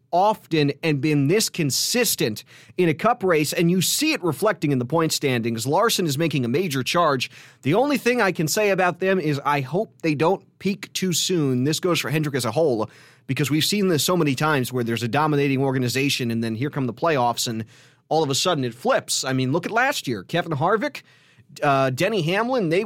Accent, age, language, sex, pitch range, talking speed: American, 30-49, English, male, 135-180 Hz, 220 wpm